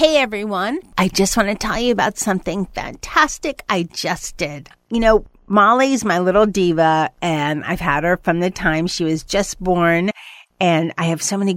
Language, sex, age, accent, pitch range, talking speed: English, female, 50-69, American, 165-215 Hz, 185 wpm